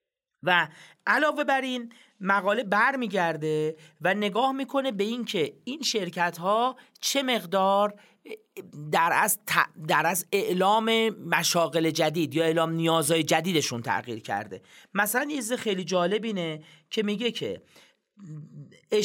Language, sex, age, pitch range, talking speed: Persian, male, 40-59, 160-215 Hz, 120 wpm